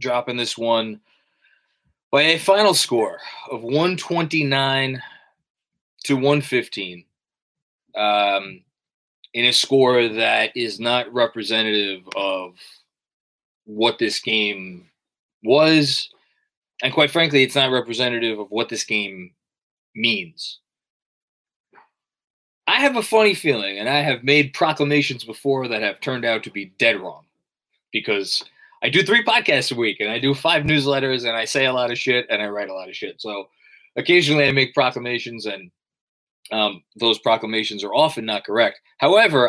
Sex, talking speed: male, 145 wpm